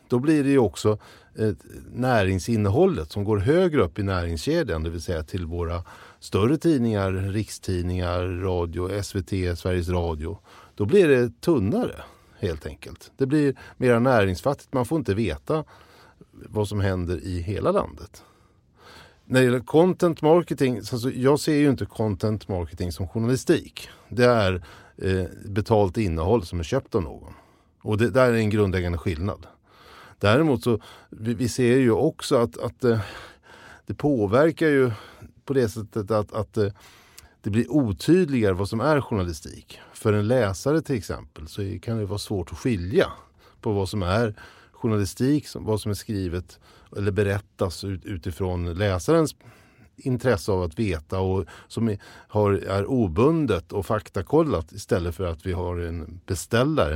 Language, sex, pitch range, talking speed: Swedish, male, 90-120 Hz, 145 wpm